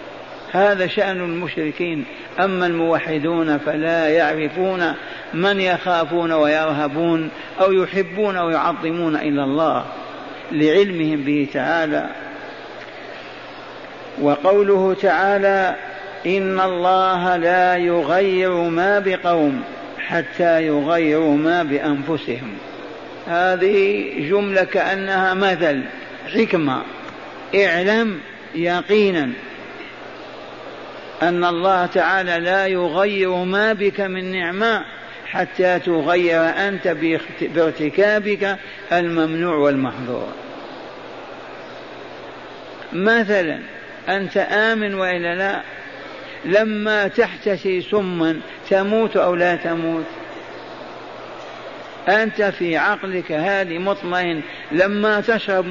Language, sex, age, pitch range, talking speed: Arabic, male, 50-69, 165-195 Hz, 80 wpm